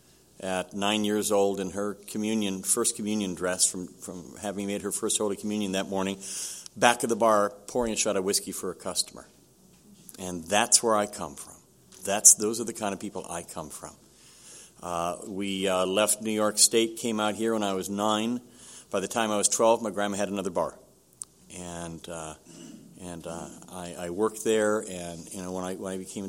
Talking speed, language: 205 wpm, English